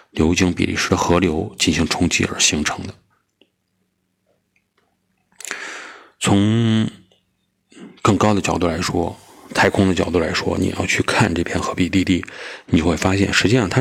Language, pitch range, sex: Chinese, 90-110 Hz, male